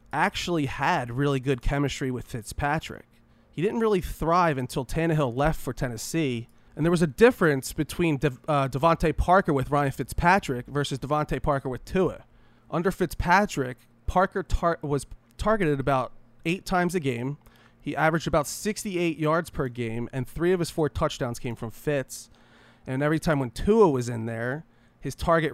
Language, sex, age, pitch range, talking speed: English, male, 30-49, 125-170 Hz, 160 wpm